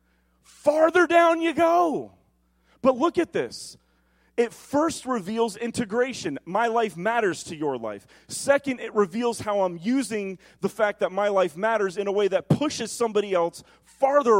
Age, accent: 30-49, American